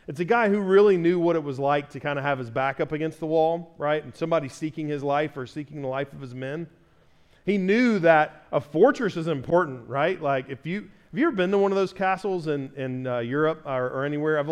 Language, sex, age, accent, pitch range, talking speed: English, male, 40-59, American, 135-170 Hz, 245 wpm